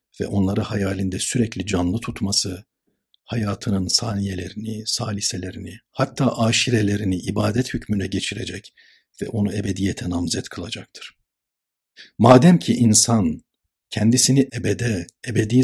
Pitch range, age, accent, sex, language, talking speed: 95-120 Hz, 60-79, native, male, Turkish, 95 wpm